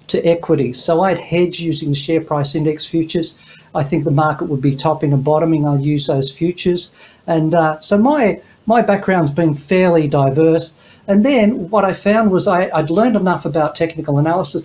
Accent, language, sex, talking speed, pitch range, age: Australian, English, male, 195 wpm, 145-165 Hz, 50-69